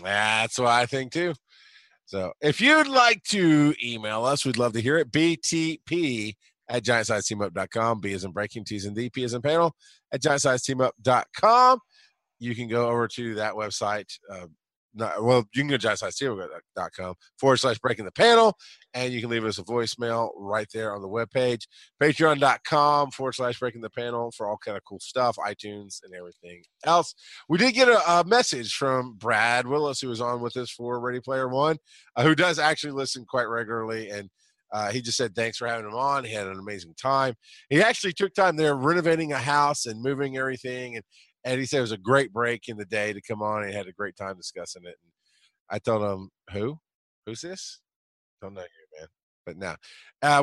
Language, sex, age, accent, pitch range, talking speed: English, male, 30-49, American, 105-140 Hz, 210 wpm